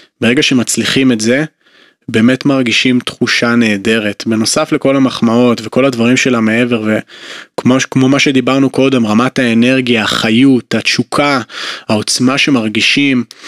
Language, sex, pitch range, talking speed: Hebrew, male, 115-130 Hz, 110 wpm